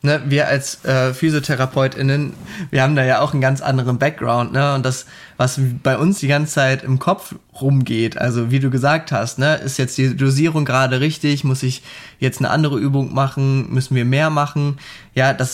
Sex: male